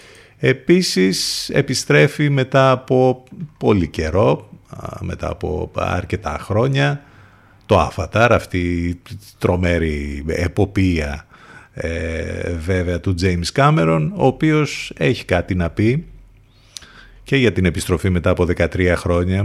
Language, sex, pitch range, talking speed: Greek, male, 85-115 Hz, 105 wpm